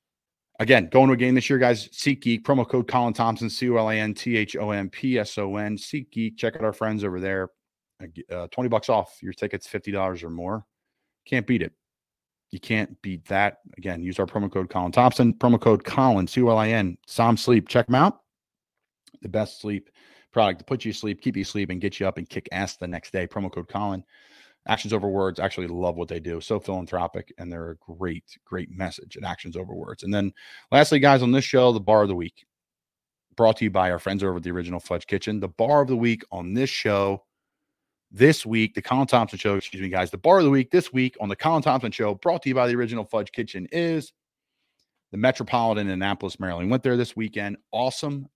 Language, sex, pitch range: English, male, 95-125 Hz